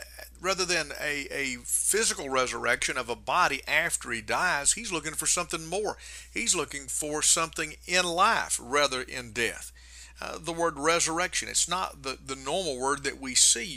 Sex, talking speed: male, 165 wpm